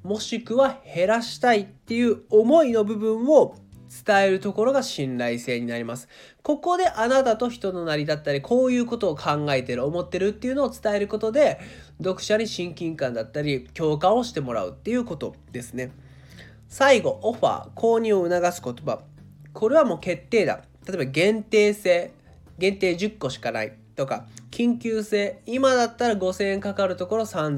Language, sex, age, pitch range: Japanese, male, 20-39, 135-220 Hz